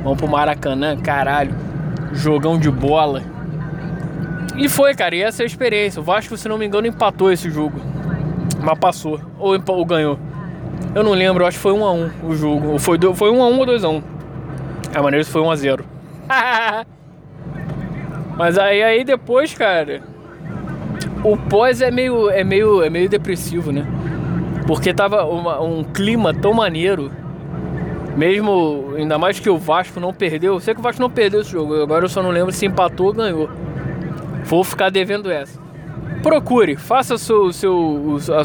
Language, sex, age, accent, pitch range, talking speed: Portuguese, male, 20-39, Brazilian, 155-200 Hz, 170 wpm